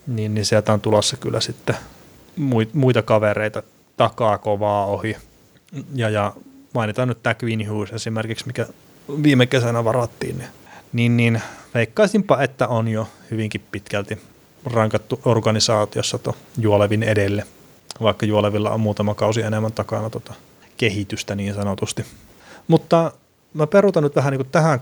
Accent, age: native, 30-49